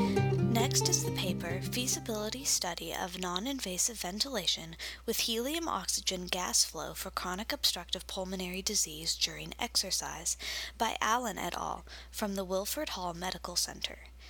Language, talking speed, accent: English, 130 wpm, American